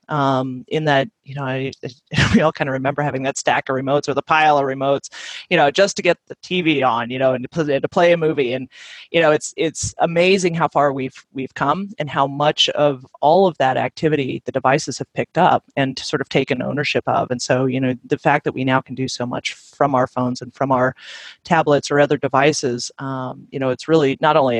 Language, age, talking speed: English, 30-49, 235 wpm